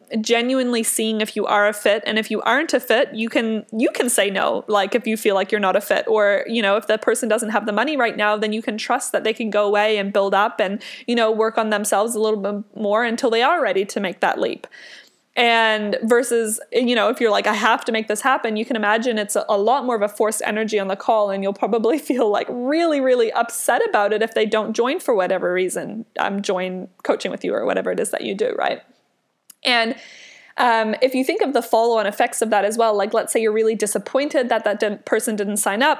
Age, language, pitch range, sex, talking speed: 20-39, English, 210-240 Hz, female, 260 wpm